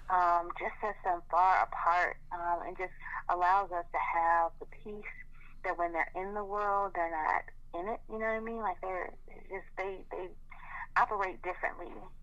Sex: female